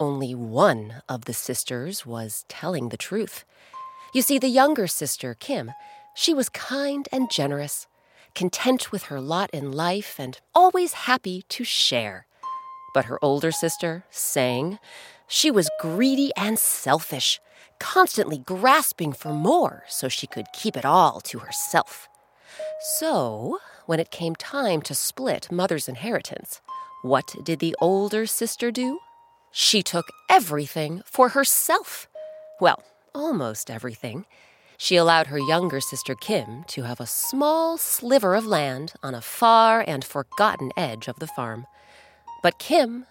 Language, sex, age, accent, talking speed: English, female, 30-49, American, 140 wpm